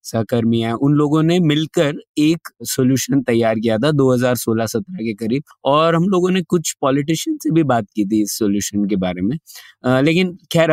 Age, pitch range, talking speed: 20-39, 125-160 Hz, 180 wpm